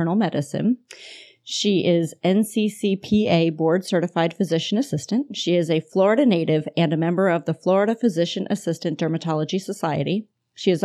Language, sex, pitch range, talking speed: English, female, 160-190 Hz, 140 wpm